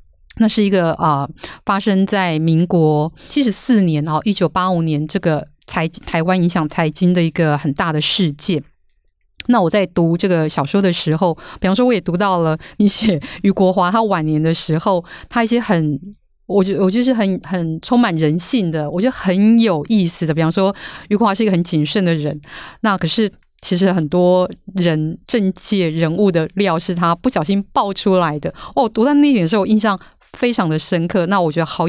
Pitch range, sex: 165-205 Hz, female